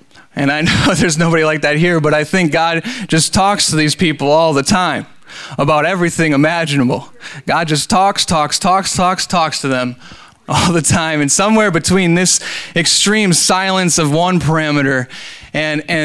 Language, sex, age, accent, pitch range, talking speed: English, male, 20-39, American, 150-175 Hz, 170 wpm